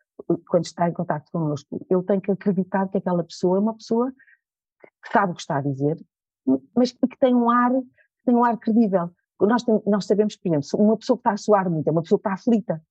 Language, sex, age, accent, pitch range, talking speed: Portuguese, female, 40-59, Brazilian, 180-245 Hz, 235 wpm